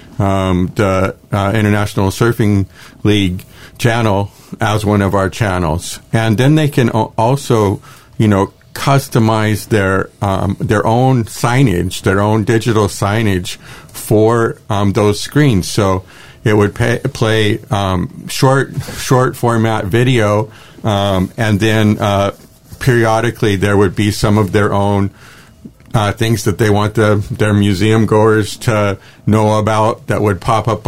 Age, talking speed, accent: 50-69, 140 wpm, American